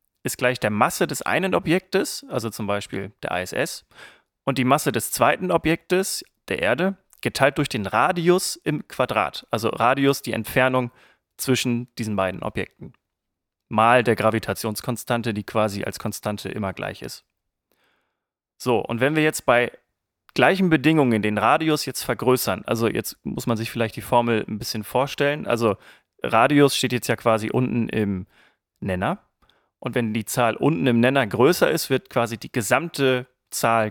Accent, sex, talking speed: German, male, 160 wpm